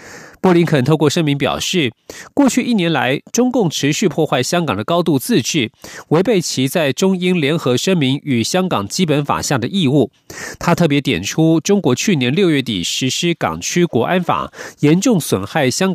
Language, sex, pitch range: Chinese, male, 135-180 Hz